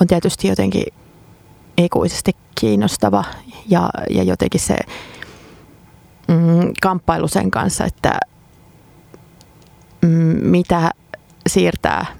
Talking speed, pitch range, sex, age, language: 80 wpm, 160-195 Hz, female, 30-49, Finnish